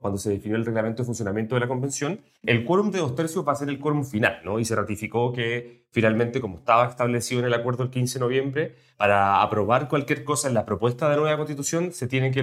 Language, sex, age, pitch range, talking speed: Spanish, male, 30-49, 105-130 Hz, 245 wpm